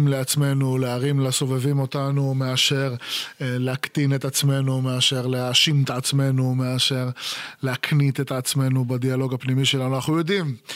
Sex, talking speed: male, 125 wpm